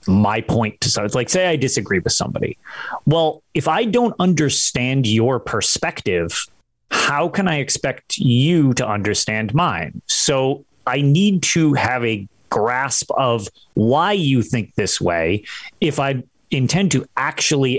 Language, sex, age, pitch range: English, male, 30-49, 120-160 Hz